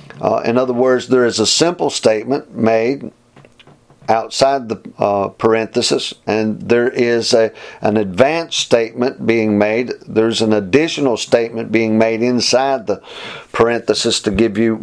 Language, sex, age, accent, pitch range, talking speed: English, male, 50-69, American, 110-130 Hz, 140 wpm